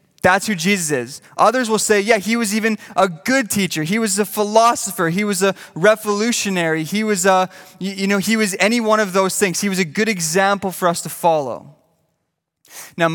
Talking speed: 200 wpm